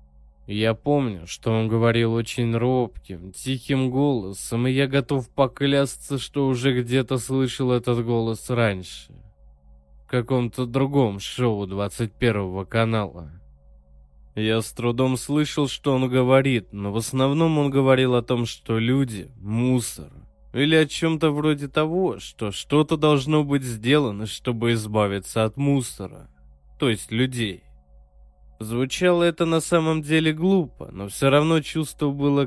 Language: Russian